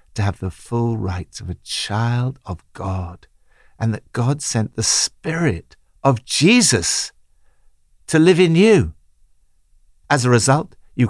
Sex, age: male, 60-79